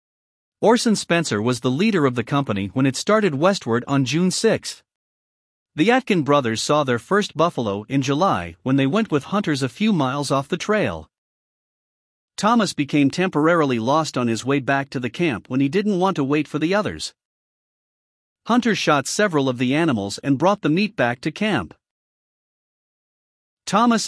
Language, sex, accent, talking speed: English, male, American, 170 wpm